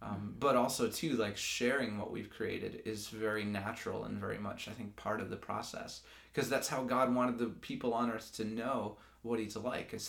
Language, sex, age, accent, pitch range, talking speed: English, male, 20-39, American, 110-125 Hz, 215 wpm